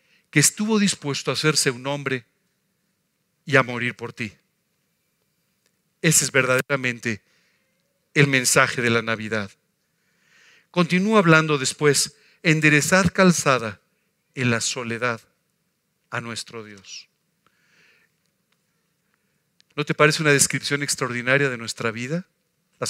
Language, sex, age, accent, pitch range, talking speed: Spanish, male, 50-69, Mexican, 130-170 Hz, 105 wpm